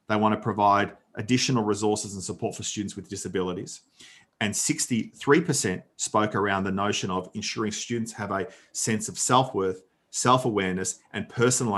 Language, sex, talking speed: English, male, 150 wpm